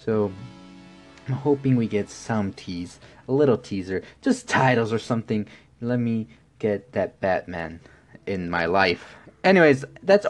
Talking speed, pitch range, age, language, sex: 140 wpm, 105-140 Hz, 20-39, English, male